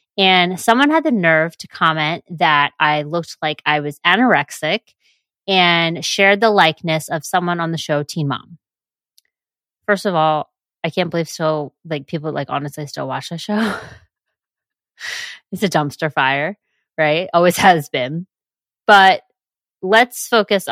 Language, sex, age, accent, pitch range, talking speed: English, female, 20-39, American, 150-195 Hz, 150 wpm